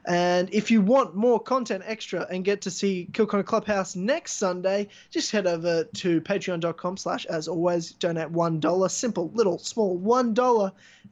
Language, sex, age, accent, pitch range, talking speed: English, male, 20-39, Australian, 175-215 Hz, 155 wpm